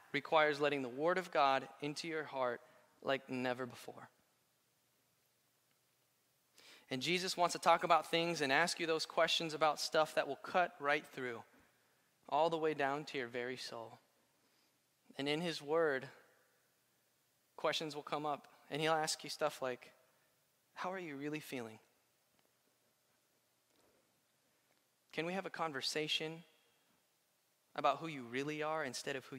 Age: 20-39